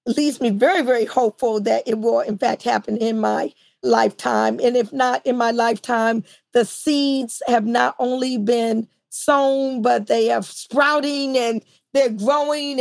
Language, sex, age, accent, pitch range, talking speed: English, female, 40-59, American, 235-300 Hz, 160 wpm